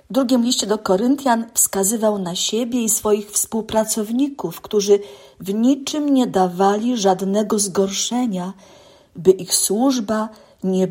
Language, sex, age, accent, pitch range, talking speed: Polish, female, 50-69, native, 190-230 Hz, 120 wpm